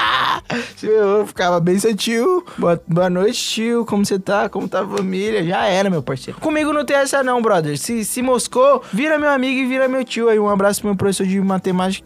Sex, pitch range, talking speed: male, 165-230 Hz, 215 wpm